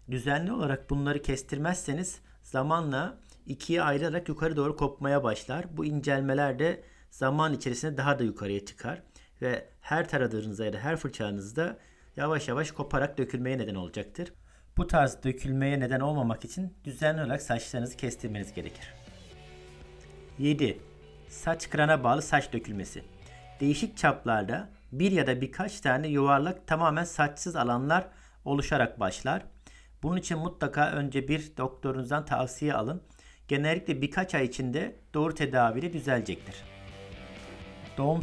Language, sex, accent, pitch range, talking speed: Turkish, male, native, 120-160 Hz, 125 wpm